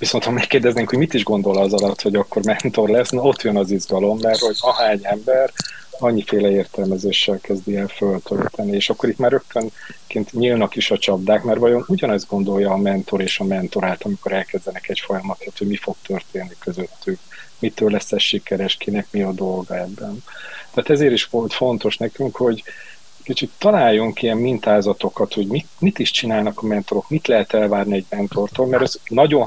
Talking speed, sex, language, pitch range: 180 wpm, male, Hungarian, 100-115 Hz